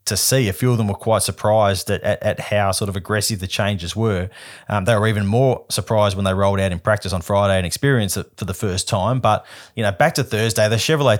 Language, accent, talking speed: English, Australian, 255 wpm